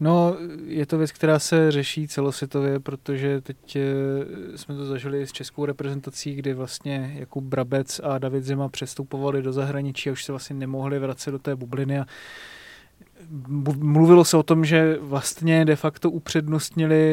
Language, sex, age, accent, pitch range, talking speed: Czech, male, 20-39, native, 135-155 Hz, 155 wpm